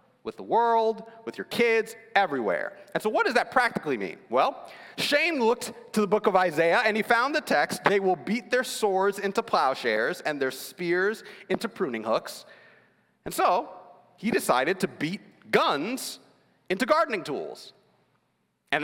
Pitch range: 175-235 Hz